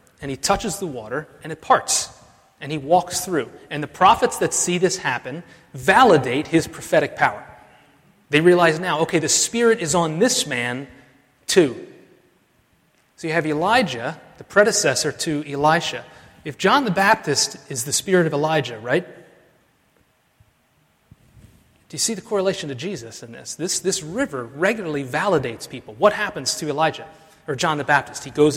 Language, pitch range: English, 135-180 Hz